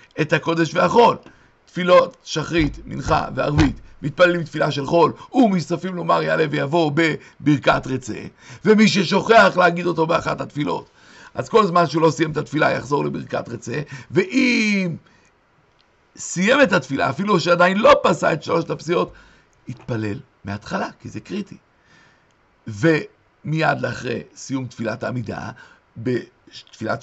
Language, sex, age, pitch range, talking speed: Hebrew, male, 60-79, 150-180 Hz, 125 wpm